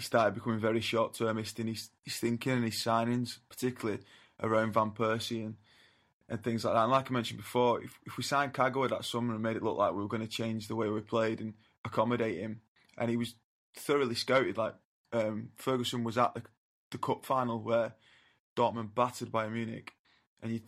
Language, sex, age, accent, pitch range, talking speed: English, male, 20-39, British, 110-120 Hz, 205 wpm